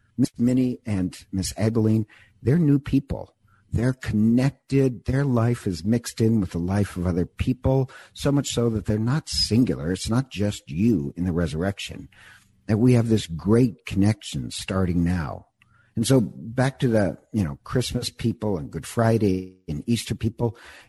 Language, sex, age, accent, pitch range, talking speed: English, male, 50-69, American, 95-120 Hz, 165 wpm